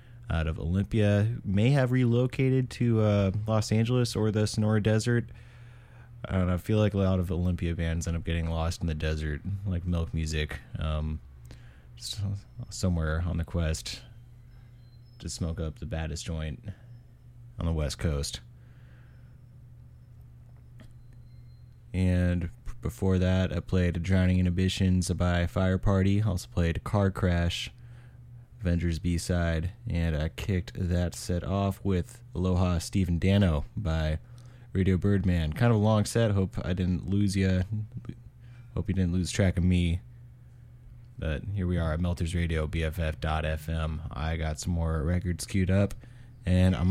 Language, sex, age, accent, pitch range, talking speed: English, male, 20-39, American, 85-120 Hz, 145 wpm